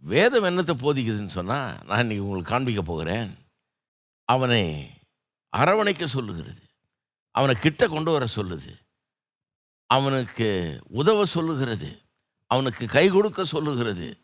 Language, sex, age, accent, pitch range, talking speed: Tamil, male, 60-79, native, 105-150 Hz, 100 wpm